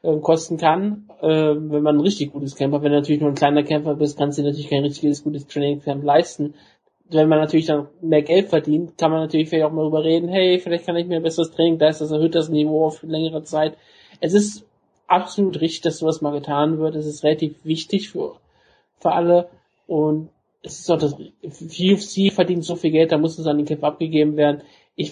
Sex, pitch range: male, 150-170 Hz